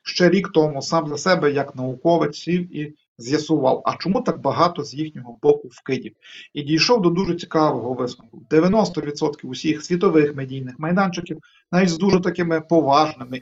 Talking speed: 150 wpm